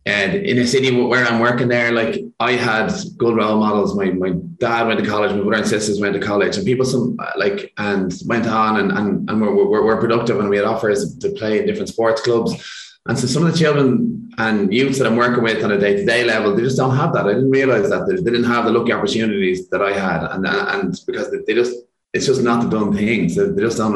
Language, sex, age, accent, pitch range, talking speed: English, male, 20-39, Irish, 105-135 Hz, 250 wpm